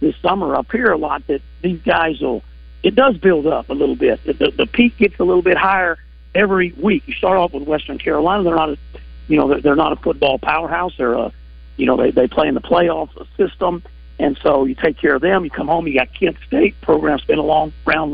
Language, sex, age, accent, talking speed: English, male, 50-69, American, 245 wpm